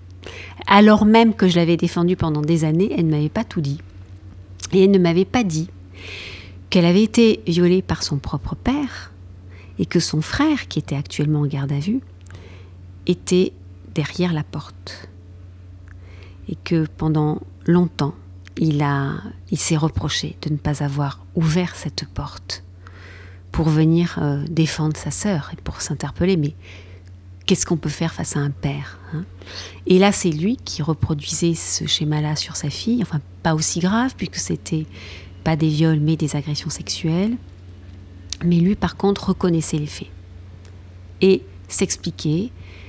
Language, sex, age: French, female, 50-69